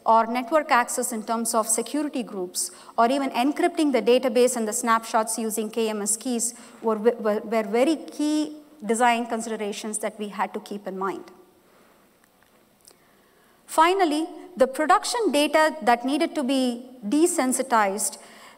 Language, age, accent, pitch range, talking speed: English, 50-69, Indian, 225-285 Hz, 130 wpm